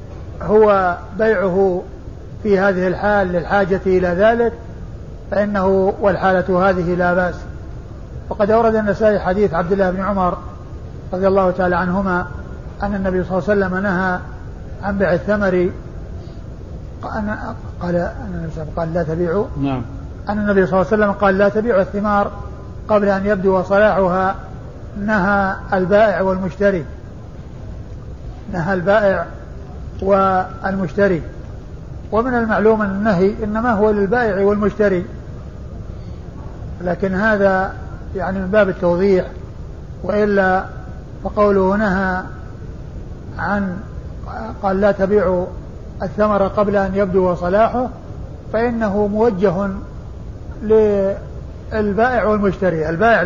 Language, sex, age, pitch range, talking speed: Arabic, male, 50-69, 180-210 Hz, 105 wpm